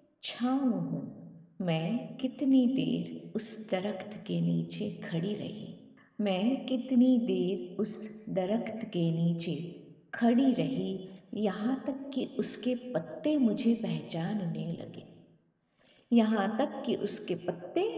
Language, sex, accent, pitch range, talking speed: Hindi, female, native, 175-240 Hz, 110 wpm